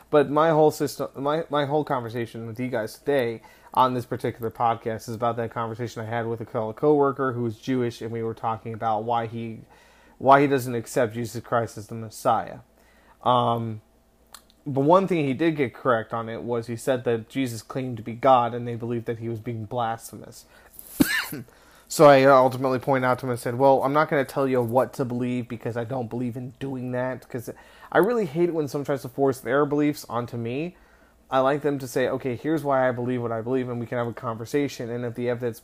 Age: 30-49